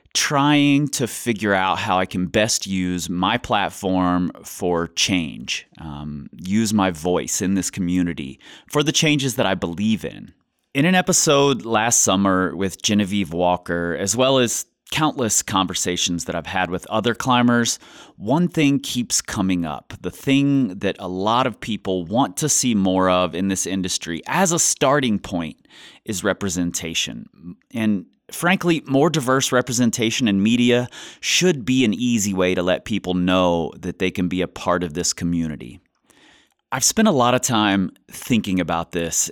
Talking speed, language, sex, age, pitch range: 160 wpm, English, male, 30-49, 90-125 Hz